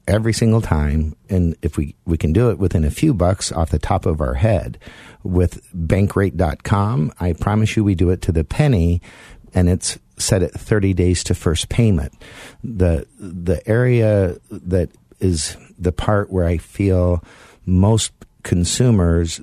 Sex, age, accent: male, 50-69, American